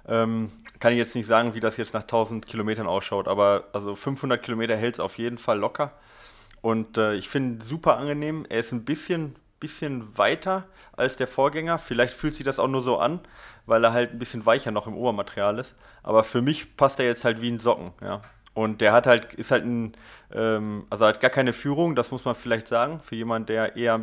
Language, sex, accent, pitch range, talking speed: German, male, German, 110-125 Hz, 225 wpm